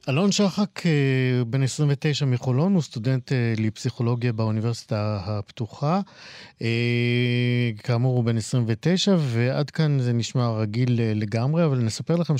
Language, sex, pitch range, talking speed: Hebrew, male, 115-140 Hz, 120 wpm